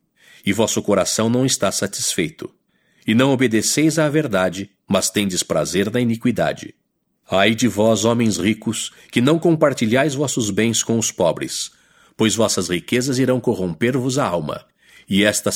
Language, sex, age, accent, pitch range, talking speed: English, male, 50-69, Brazilian, 100-130 Hz, 145 wpm